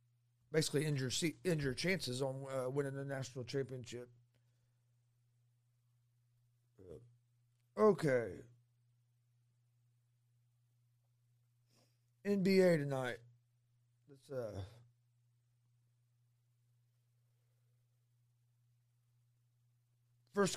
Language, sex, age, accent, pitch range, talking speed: English, male, 40-59, American, 120-155 Hz, 45 wpm